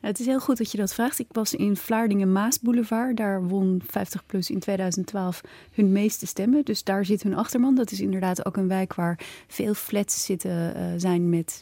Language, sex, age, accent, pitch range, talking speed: Dutch, female, 30-49, Dutch, 185-225 Hz, 200 wpm